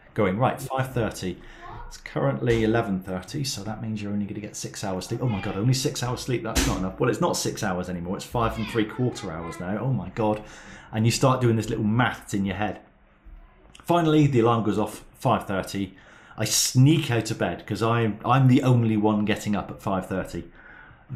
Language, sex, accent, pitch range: English, male, British, 100-125 Hz